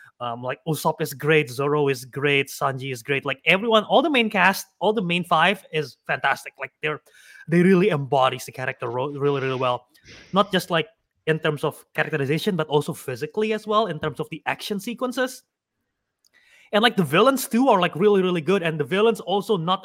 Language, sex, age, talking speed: English, male, 20-39, 200 wpm